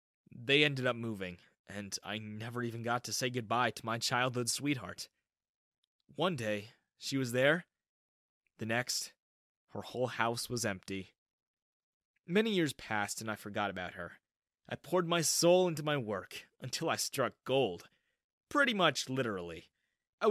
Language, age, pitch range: English, 20-39, 115-170 Hz